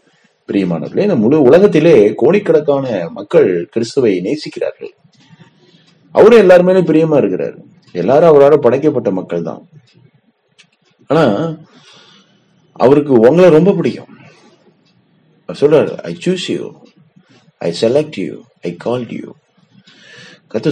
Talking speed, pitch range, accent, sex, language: 40 wpm, 135-200 Hz, native, male, Tamil